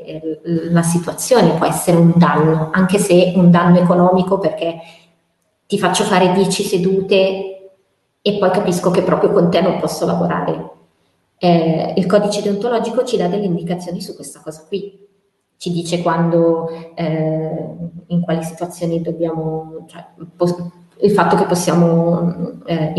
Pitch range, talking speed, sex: 165-185 Hz, 140 wpm, female